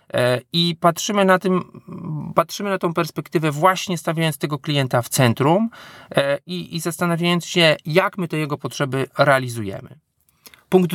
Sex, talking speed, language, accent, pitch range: male, 135 wpm, Polish, native, 130-175 Hz